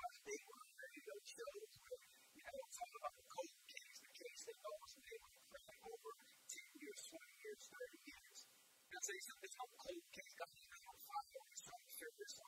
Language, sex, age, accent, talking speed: English, female, 40-59, American, 175 wpm